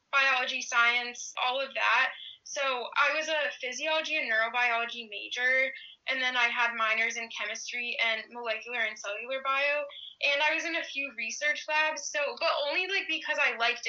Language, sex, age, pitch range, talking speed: English, female, 10-29, 235-295 Hz, 175 wpm